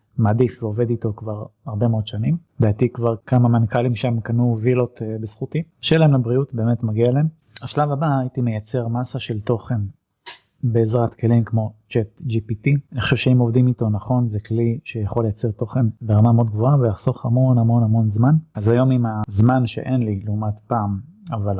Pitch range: 110-125 Hz